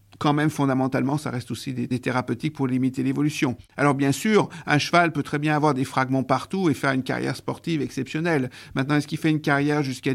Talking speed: 215 wpm